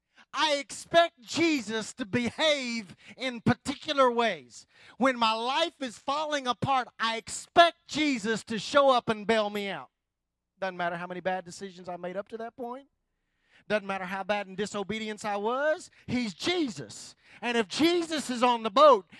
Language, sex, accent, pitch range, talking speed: English, male, American, 215-270 Hz, 165 wpm